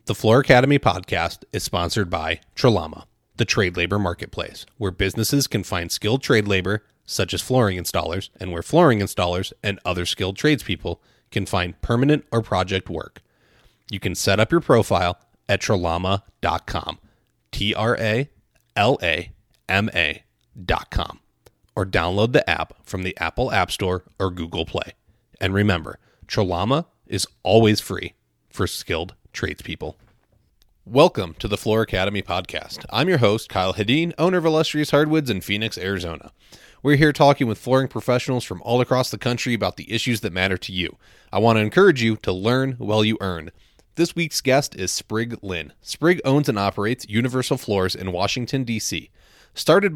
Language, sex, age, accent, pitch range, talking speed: English, male, 30-49, American, 95-125 Hz, 155 wpm